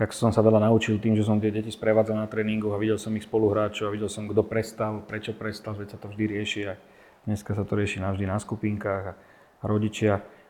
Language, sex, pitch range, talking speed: Slovak, male, 100-110 Hz, 225 wpm